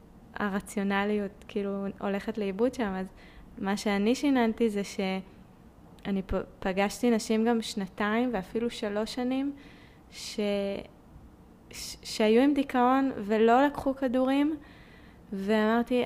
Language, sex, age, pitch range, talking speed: Hebrew, female, 20-39, 200-245 Hz, 100 wpm